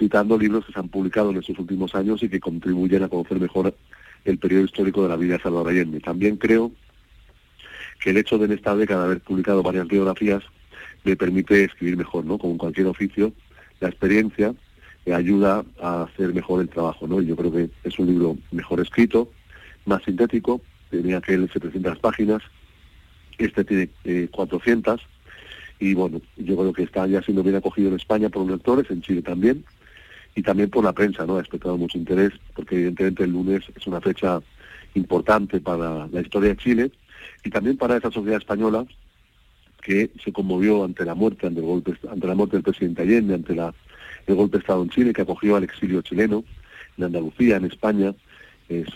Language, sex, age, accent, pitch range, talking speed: Spanish, male, 40-59, Spanish, 90-105 Hz, 190 wpm